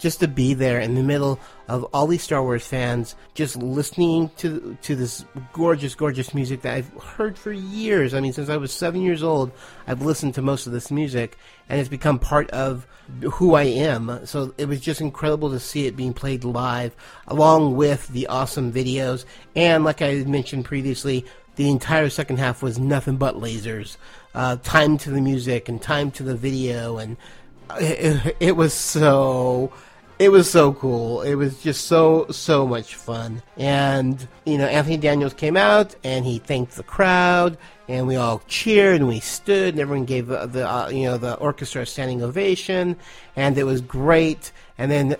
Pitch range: 130-155 Hz